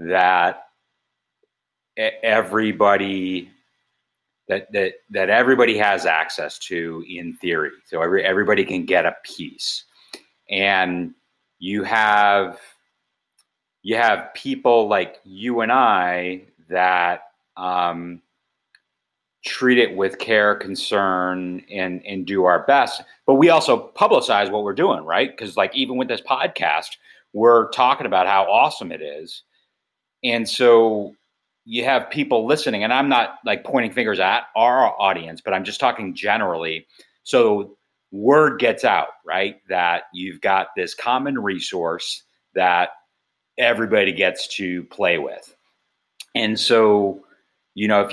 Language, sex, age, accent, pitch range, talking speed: English, male, 30-49, American, 90-110 Hz, 130 wpm